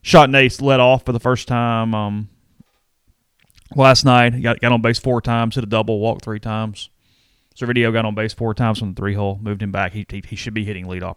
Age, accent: 30-49, American